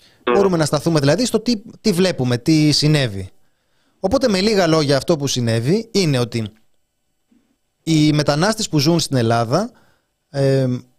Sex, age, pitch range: male, 30-49, 125-165 Hz